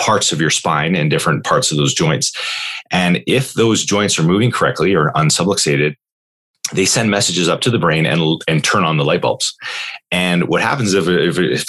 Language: English